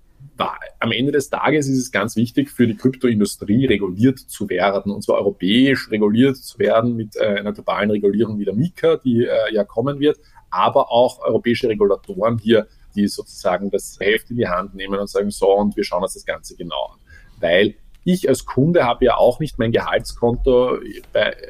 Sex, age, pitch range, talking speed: male, 20-39, 100-130 Hz, 185 wpm